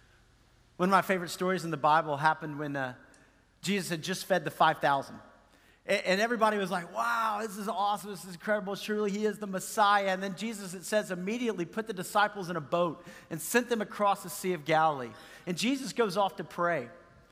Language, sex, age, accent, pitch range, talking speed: English, male, 40-59, American, 175-220 Hz, 205 wpm